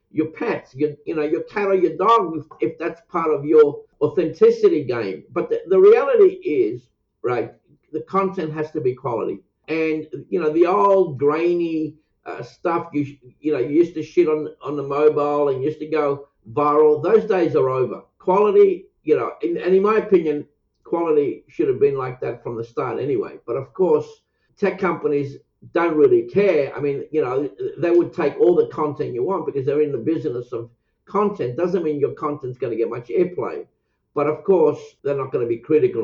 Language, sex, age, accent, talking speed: English, male, 60-79, South African, 200 wpm